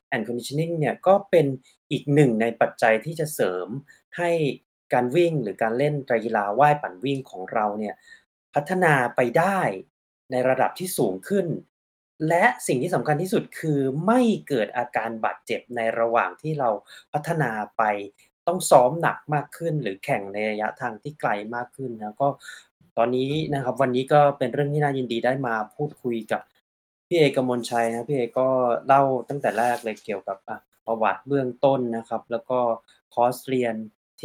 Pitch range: 115-145 Hz